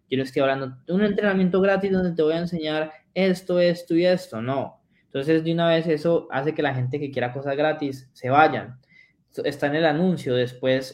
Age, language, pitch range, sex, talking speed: 20-39, Spanish, 130-155 Hz, male, 210 wpm